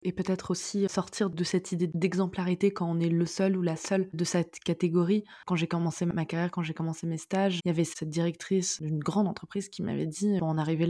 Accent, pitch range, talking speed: French, 165-190 Hz, 235 wpm